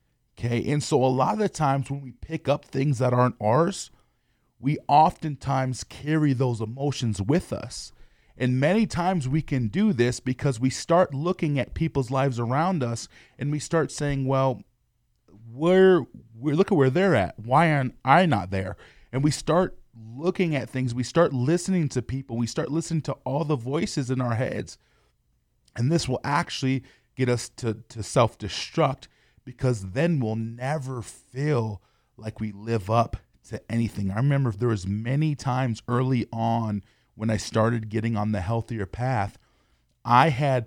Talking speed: 170 wpm